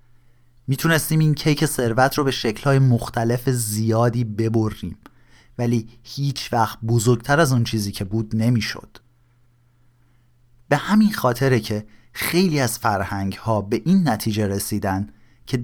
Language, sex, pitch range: Persian, male, 110-130 Hz